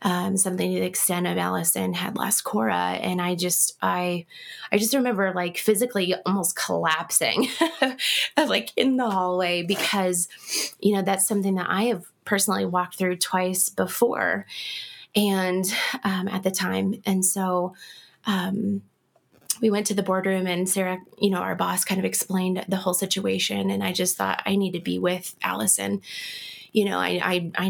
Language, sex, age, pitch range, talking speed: English, female, 20-39, 180-205 Hz, 170 wpm